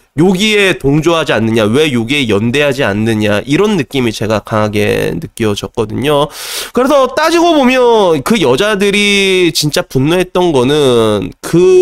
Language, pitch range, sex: Korean, 125-200 Hz, male